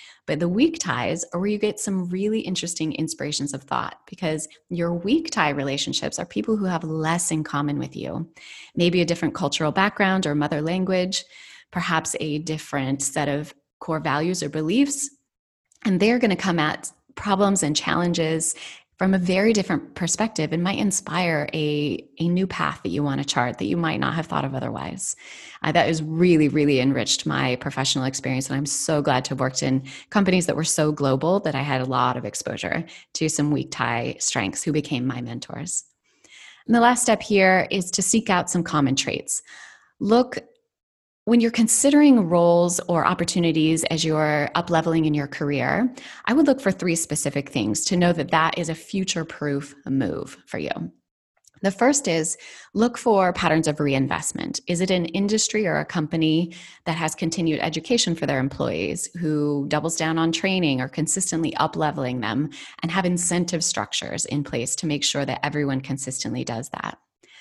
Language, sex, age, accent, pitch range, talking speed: English, female, 30-49, American, 150-190 Hz, 180 wpm